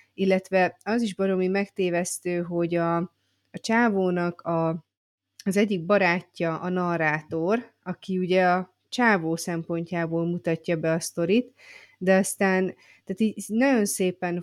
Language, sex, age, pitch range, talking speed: Hungarian, female, 30-49, 175-210 Hz, 110 wpm